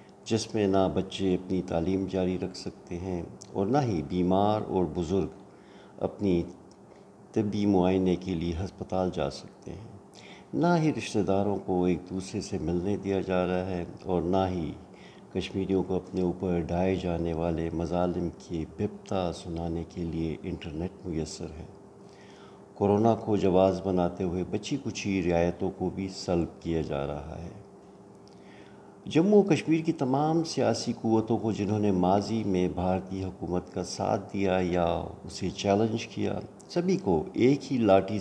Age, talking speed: 50-69, 155 wpm